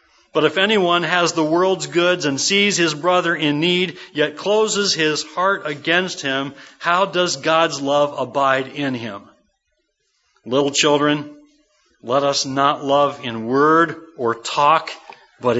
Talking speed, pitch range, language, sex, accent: 140 wpm, 135-180 Hz, English, male, American